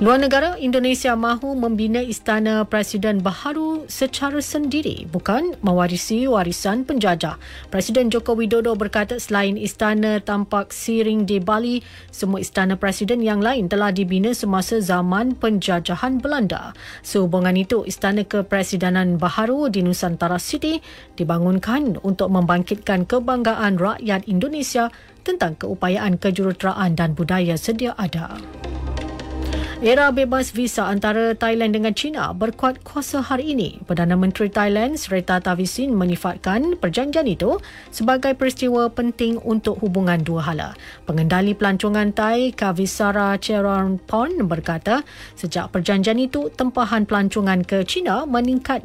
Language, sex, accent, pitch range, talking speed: English, female, Malaysian, 185-240 Hz, 120 wpm